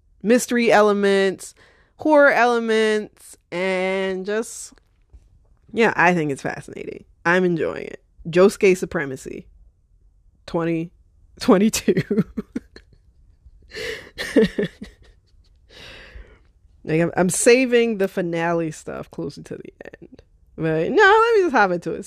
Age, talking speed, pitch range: 20-39, 105 wpm, 165-215 Hz